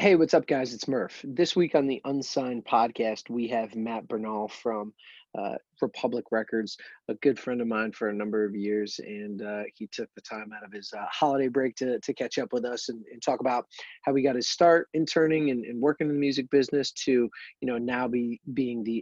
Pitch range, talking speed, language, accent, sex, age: 115-140 Hz, 225 wpm, English, American, male, 30-49